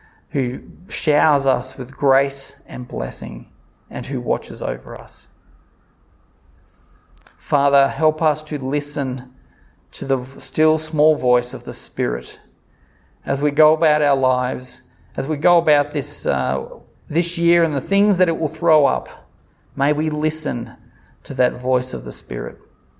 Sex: male